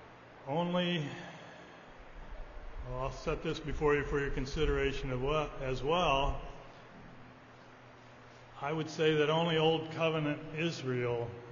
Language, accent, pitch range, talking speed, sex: English, American, 130-150 Hz, 115 wpm, male